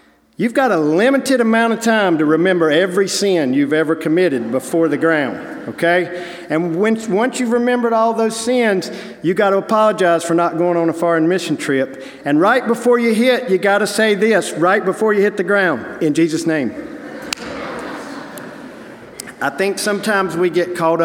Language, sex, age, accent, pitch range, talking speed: English, male, 50-69, American, 155-195 Hz, 180 wpm